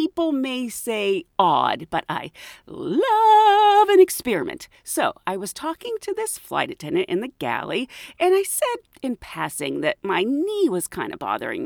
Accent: American